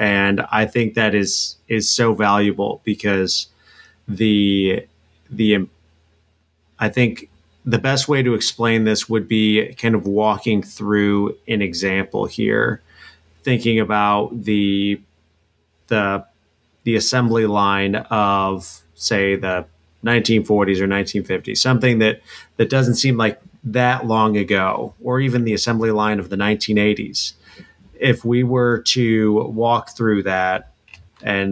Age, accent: 30-49, American